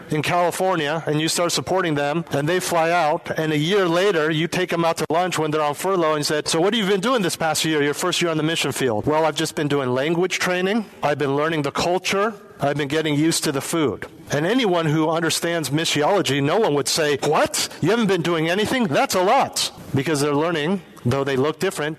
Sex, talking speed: male, 235 wpm